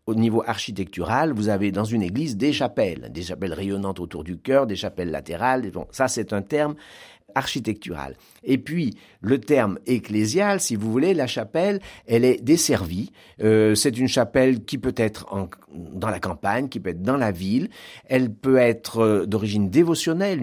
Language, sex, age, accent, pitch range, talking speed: French, male, 60-79, French, 105-155 Hz, 180 wpm